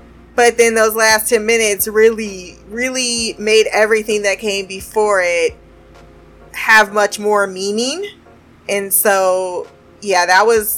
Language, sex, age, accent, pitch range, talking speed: English, female, 20-39, American, 195-250 Hz, 130 wpm